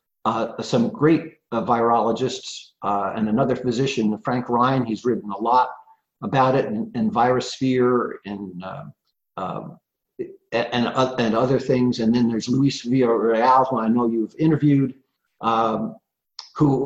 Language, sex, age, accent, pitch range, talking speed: English, male, 50-69, American, 115-160 Hz, 155 wpm